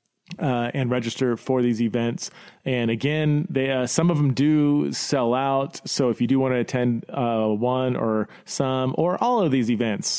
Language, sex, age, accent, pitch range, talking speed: English, male, 30-49, American, 120-160 Hz, 190 wpm